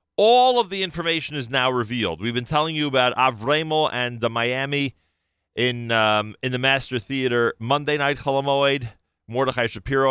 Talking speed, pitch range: 160 wpm, 110-145 Hz